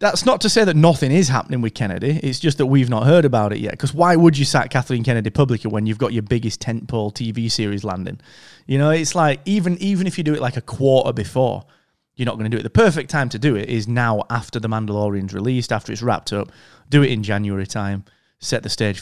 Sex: male